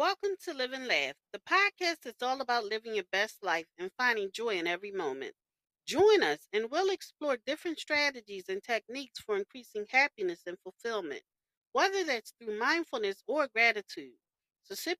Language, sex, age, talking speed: English, female, 40-59, 170 wpm